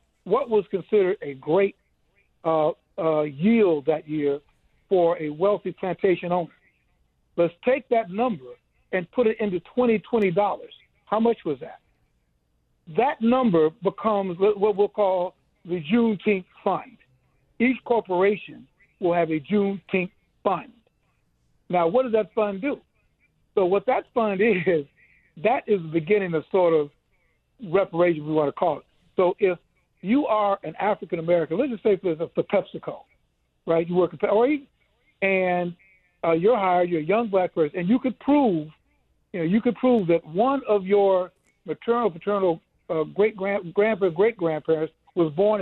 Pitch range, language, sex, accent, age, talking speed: 165-210 Hz, English, male, American, 60-79, 155 wpm